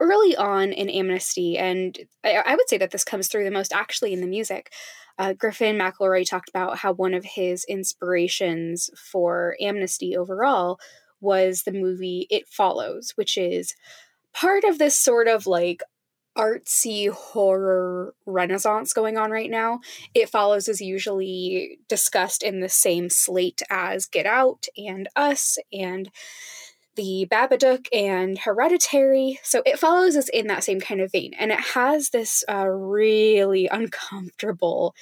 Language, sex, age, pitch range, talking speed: English, female, 10-29, 185-230 Hz, 150 wpm